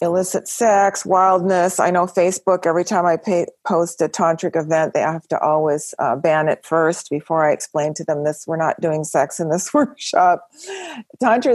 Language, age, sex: English, 50-69, female